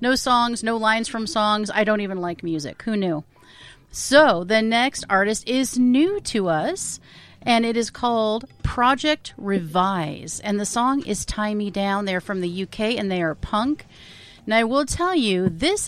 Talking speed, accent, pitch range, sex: 180 wpm, American, 185-240 Hz, female